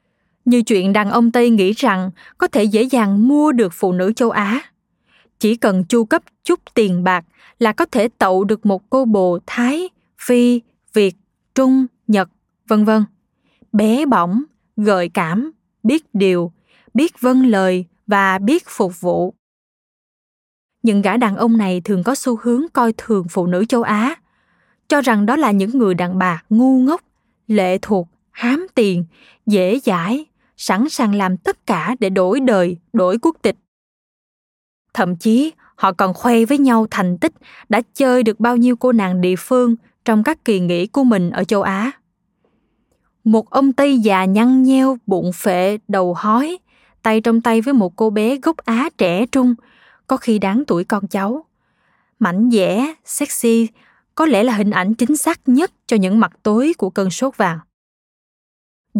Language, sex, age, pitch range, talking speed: Vietnamese, female, 20-39, 195-250 Hz, 170 wpm